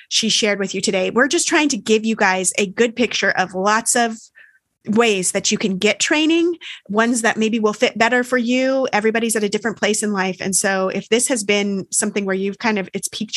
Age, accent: 30-49, American